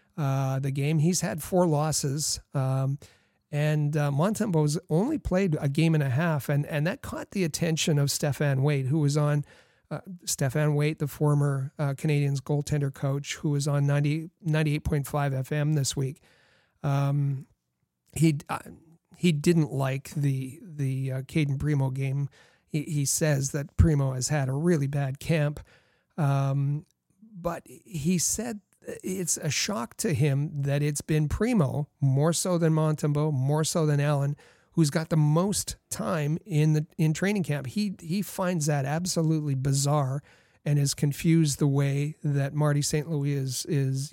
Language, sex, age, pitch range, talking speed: English, male, 40-59, 140-165 Hz, 160 wpm